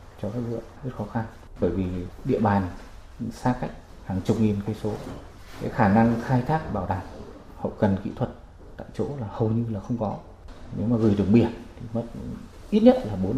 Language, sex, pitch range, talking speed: Vietnamese, male, 95-120 Hz, 210 wpm